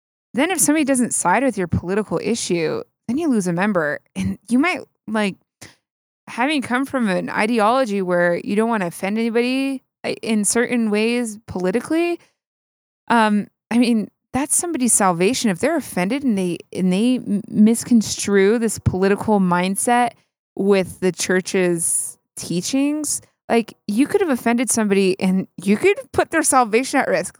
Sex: female